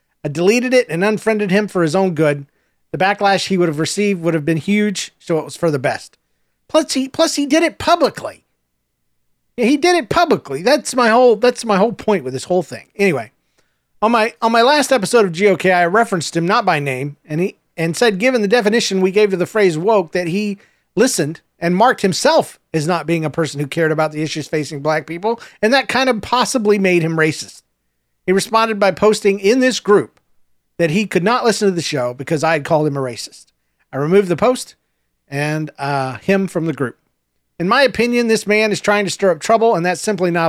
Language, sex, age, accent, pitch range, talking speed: English, male, 40-59, American, 155-210 Hz, 225 wpm